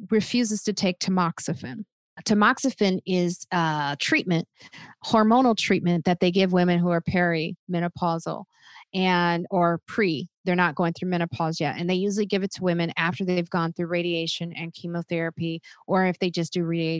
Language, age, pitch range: English, 30-49, 170-200 Hz